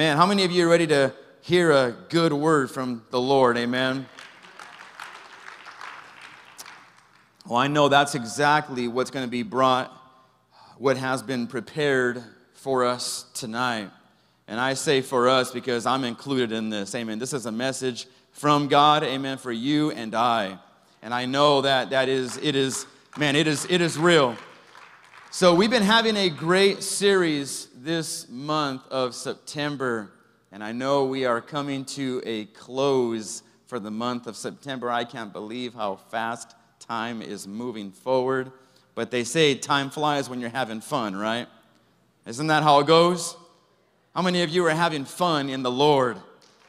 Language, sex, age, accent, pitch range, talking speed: English, male, 30-49, American, 120-150 Hz, 165 wpm